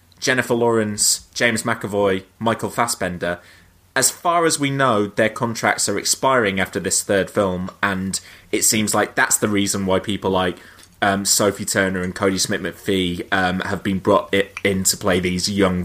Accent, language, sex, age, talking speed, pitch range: British, English, male, 20-39, 165 wpm, 90-105 Hz